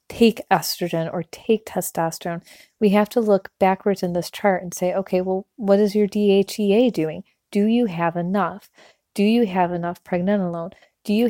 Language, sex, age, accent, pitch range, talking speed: English, female, 30-49, American, 180-215 Hz, 175 wpm